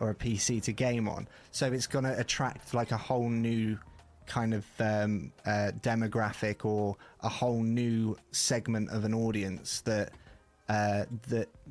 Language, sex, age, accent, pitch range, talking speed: English, male, 20-39, British, 105-120 Hz, 160 wpm